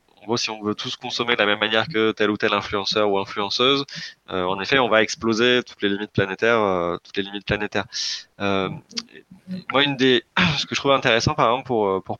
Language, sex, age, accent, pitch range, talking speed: French, male, 20-39, French, 105-125 Hz, 225 wpm